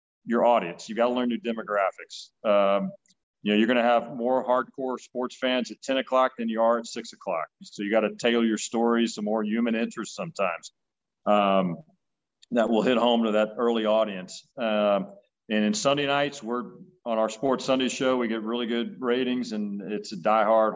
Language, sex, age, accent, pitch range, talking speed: English, male, 40-59, American, 110-125 Hz, 200 wpm